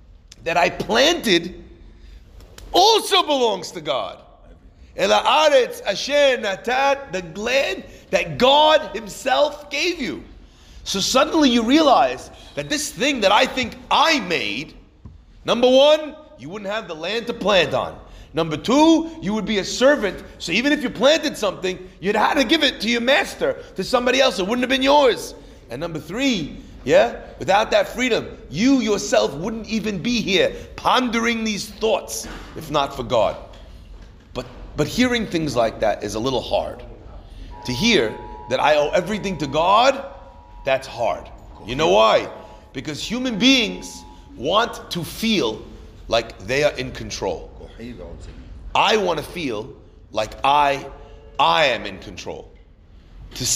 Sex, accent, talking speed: male, American, 145 wpm